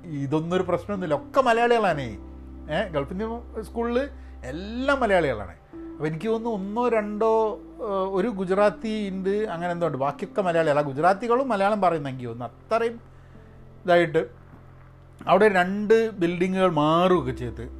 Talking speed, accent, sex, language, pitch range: 125 wpm, native, male, Malayalam, 140-205 Hz